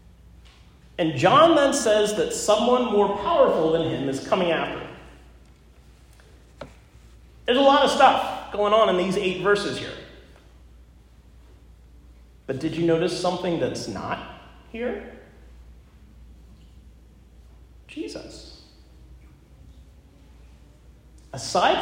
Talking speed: 100 wpm